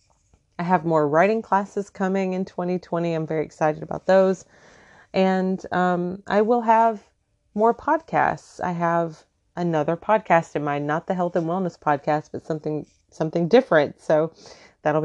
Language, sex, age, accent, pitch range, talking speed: English, female, 30-49, American, 145-180 Hz, 150 wpm